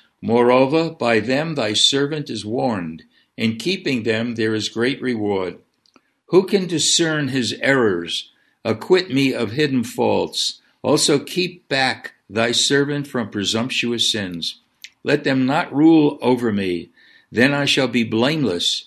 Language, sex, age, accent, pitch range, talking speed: English, male, 60-79, American, 110-145 Hz, 135 wpm